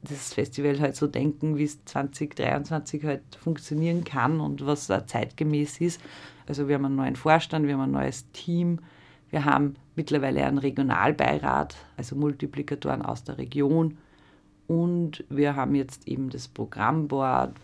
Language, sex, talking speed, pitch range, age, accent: German, female, 150 wpm, 135-150 Hz, 40-59, German